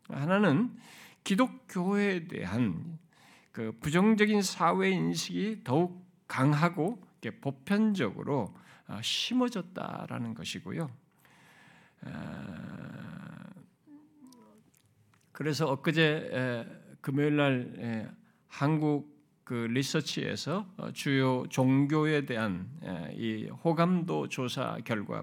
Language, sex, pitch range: Korean, male, 135-190 Hz